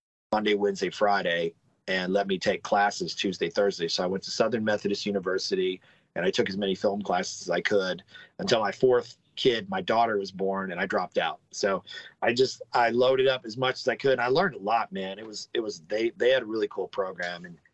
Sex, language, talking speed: male, English, 235 wpm